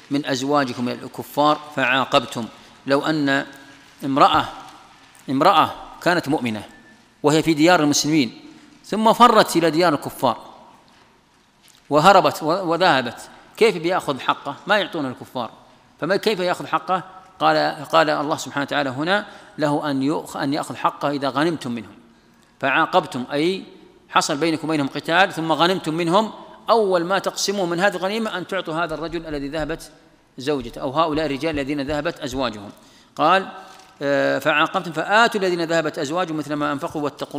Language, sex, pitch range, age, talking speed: Arabic, male, 140-165 Hz, 40-59, 130 wpm